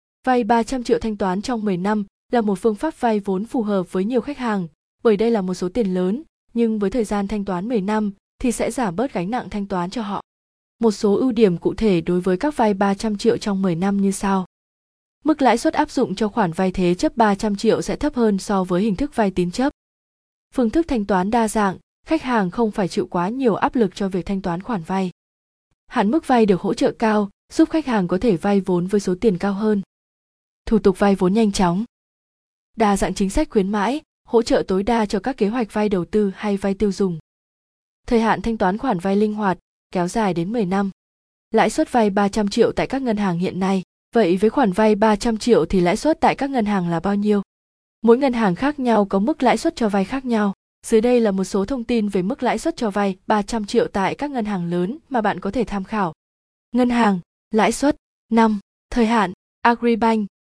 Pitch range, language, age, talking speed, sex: 190-235 Hz, Vietnamese, 20-39, 235 wpm, female